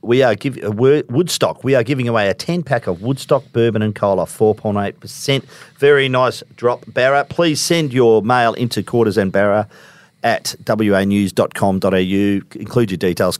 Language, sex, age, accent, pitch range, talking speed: English, male, 50-69, Australian, 105-140 Hz, 175 wpm